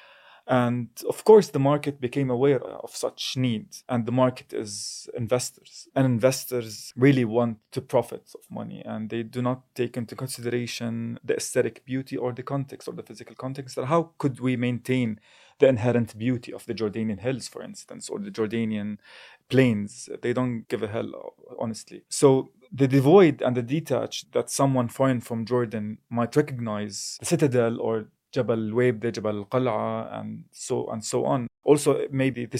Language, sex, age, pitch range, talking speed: English, male, 20-39, 120-140 Hz, 165 wpm